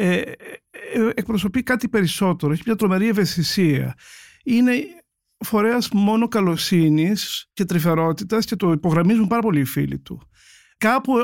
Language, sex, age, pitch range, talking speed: Greek, male, 50-69, 165-225 Hz, 115 wpm